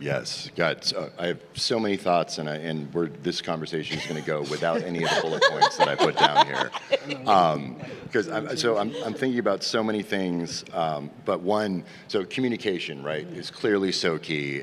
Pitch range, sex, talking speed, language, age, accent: 75-90 Hz, male, 200 wpm, English, 40-59, American